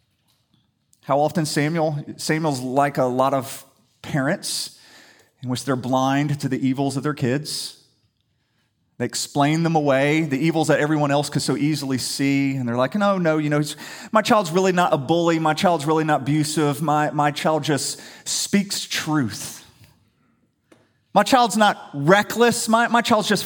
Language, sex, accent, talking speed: English, male, American, 165 wpm